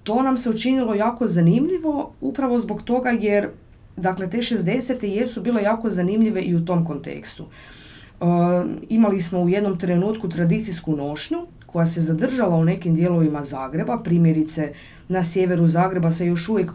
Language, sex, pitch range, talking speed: Croatian, female, 165-210 Hz, 145 wpm